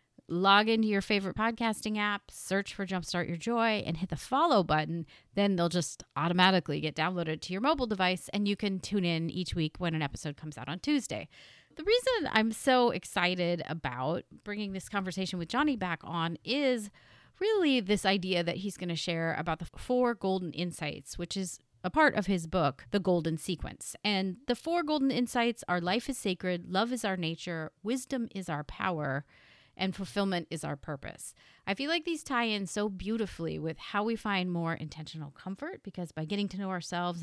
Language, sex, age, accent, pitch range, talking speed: English, female, 30-49, American, 165-210 Hz, 195 wpm